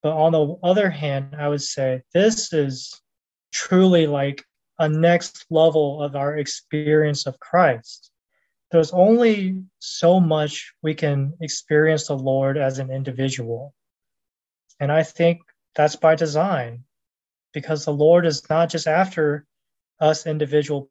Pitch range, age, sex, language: 140-165 Hz, 20-39, male, English